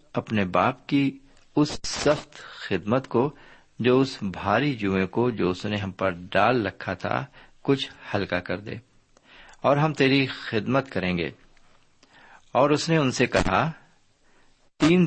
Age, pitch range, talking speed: 50-69, 95-140 Hz, 145 wpm